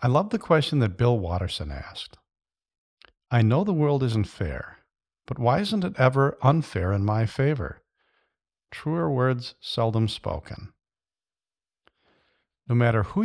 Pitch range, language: 100-135 Hz, English